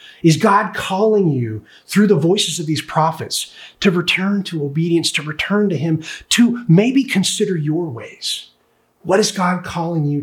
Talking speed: 165 wpm